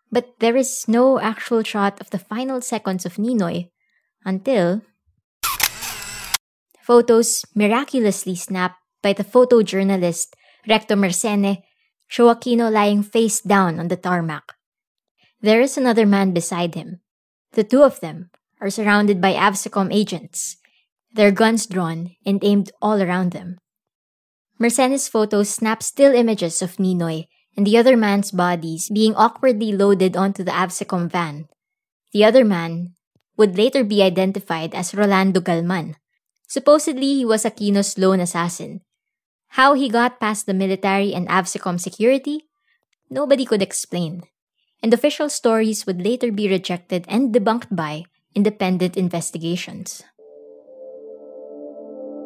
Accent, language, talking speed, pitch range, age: Filipino, English, 125 wpm, 180-230 Hz, 20-39